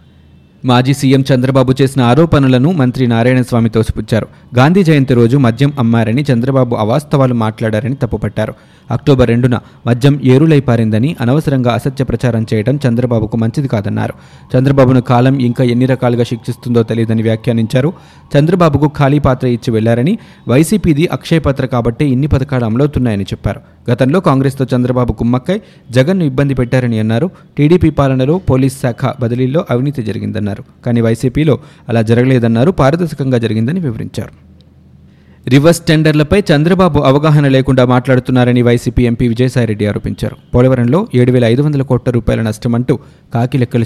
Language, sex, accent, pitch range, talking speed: Telugu, male, native, 115-140 Hz, 120 wpm